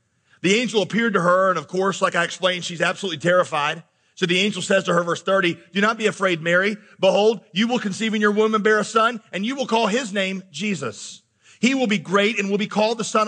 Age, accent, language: 40-59, American, English